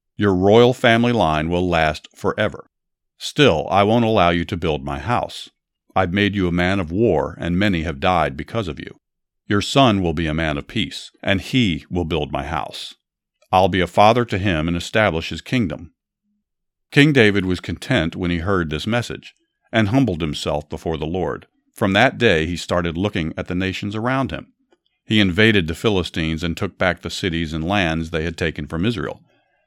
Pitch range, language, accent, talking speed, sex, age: 85-115 Hz, English, American, 195 wpm, male, 50-69